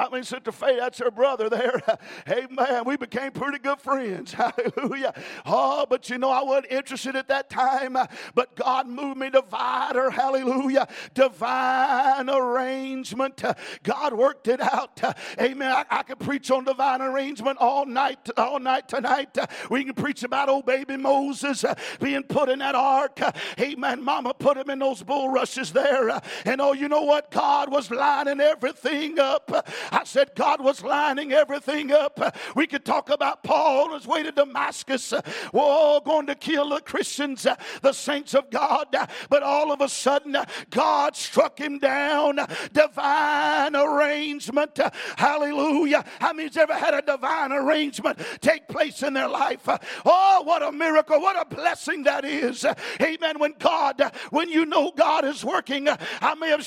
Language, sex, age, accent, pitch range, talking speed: English, male, 50-69, American, 265-300 Hz, 165 wpm